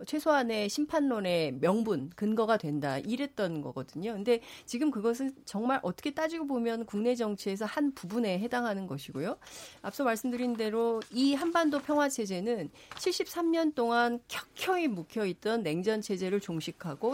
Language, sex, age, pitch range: Korean, female, 40-59, 185-260 Hz